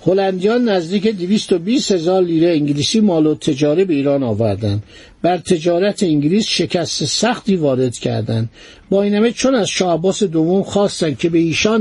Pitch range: 150-200 Hz